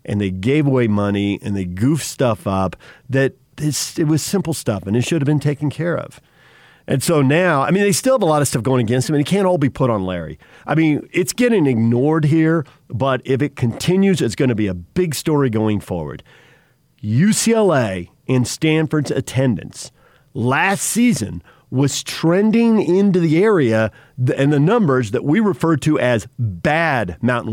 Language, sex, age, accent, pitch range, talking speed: English, male, 50-69, American, 120-160 Hz, 185 wpm